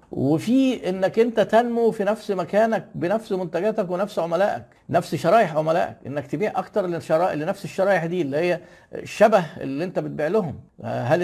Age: 50-69